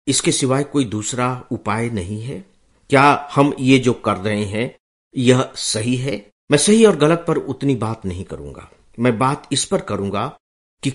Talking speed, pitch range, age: 175 wpm, 105-135 Hz, 50-69